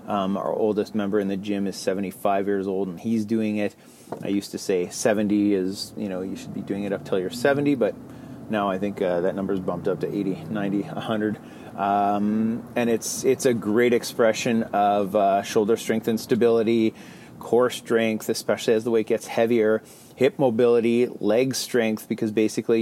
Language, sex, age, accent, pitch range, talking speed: English, male, 30-49, American, 105-115 Hz, 190 wpm